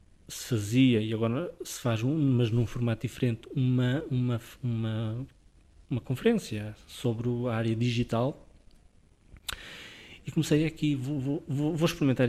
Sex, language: male, Portuguese